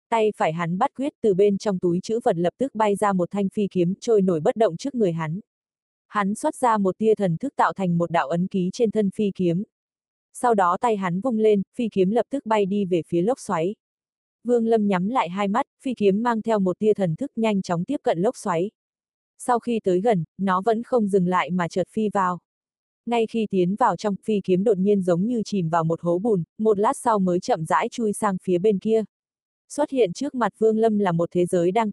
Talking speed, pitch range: 245 wpm, 180-230 Hz